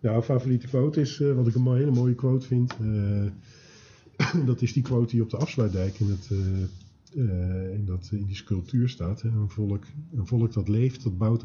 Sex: male